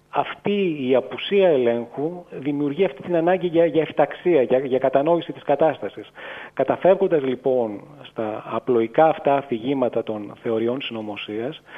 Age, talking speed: 30-49, 115 wpm